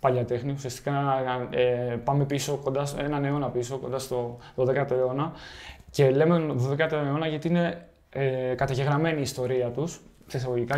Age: 20-39